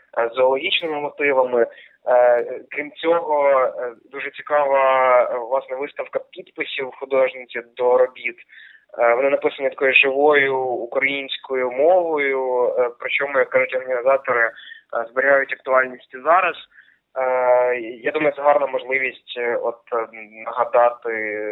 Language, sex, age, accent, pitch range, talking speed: Russian, male, 20-39, native, 125-150 Hz, 85 wpm